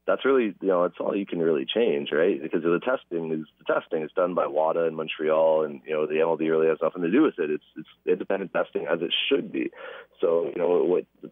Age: 30-49